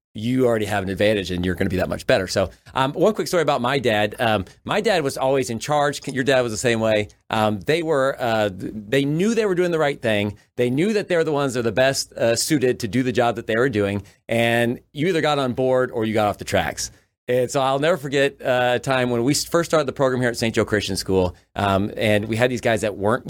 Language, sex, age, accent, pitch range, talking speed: English, male, 40-59, American, 105-130 Hz, 275 wpm